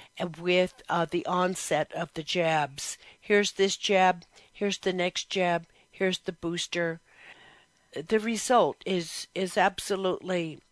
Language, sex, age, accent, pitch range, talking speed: English, female, 60-79, American, 175-210 Hz, 125 wpm